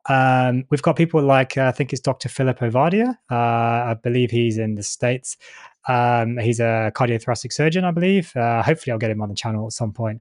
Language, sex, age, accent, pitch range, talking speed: English, male, 20-39, British, 110-135 Hz, 215 wpm